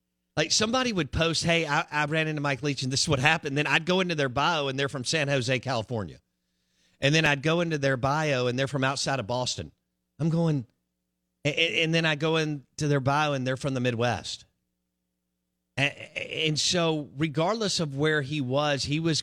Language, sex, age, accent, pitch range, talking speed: English, male, 50-69, American, 95-145 Hz, 200 wpm